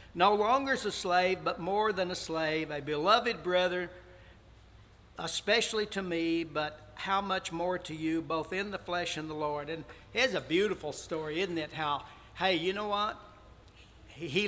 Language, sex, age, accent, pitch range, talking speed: English, male, 60-79, American, 150-215 Hz, 175 wpm